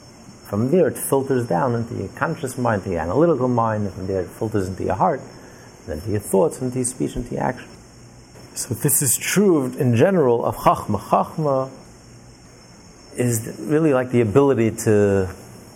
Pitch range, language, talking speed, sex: 110-140 Hz, English, 180 wpm, male